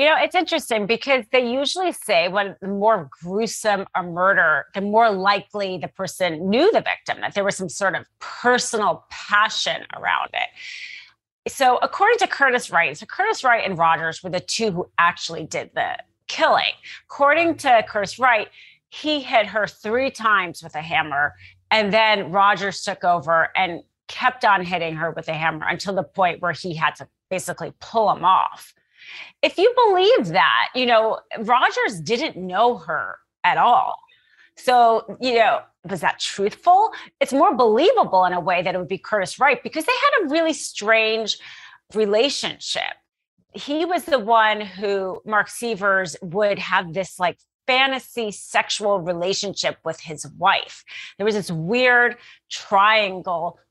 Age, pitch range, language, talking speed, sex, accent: 30-49, 185-255 Hz, English, 160 wpm, female, American